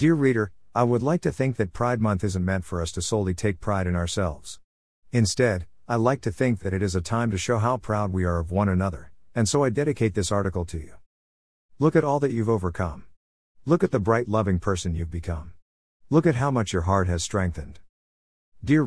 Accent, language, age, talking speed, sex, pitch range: American, English, 50-69, 225 wpm, male, 90-120 Hz